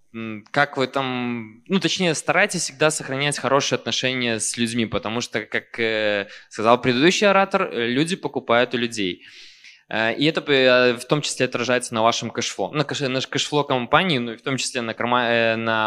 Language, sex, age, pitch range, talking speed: Russian, male, 20-39, 115-150 Hz, 175 wpm